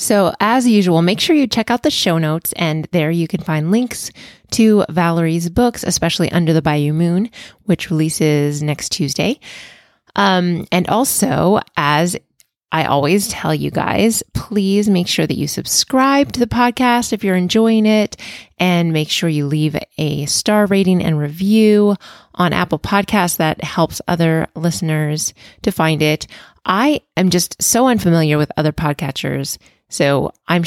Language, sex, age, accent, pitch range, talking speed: English, female, 20-39, American, 155-205 Hz, 160 wpm